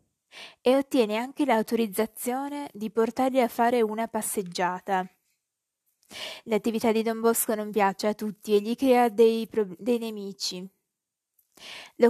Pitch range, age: 205-245 Hz, 20-39